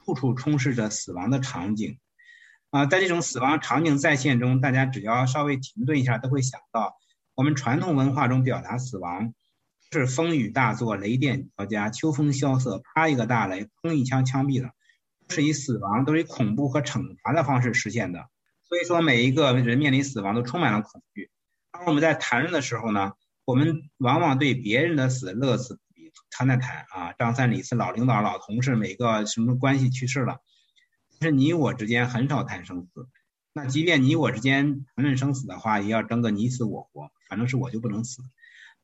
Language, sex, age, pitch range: Chinese, male, 50-69, 120-150 Hz